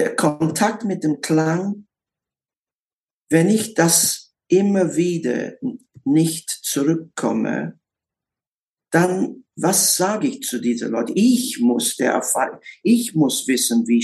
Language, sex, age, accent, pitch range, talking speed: German, male, 50-69, German, 120-175 Hz, 100 wpm